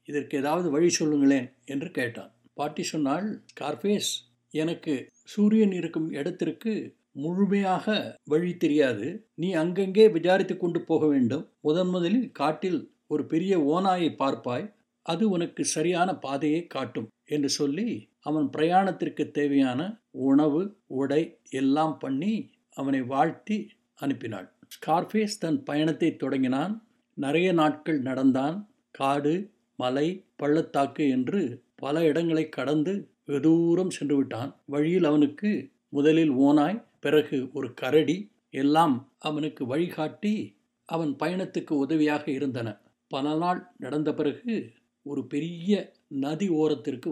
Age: 60-79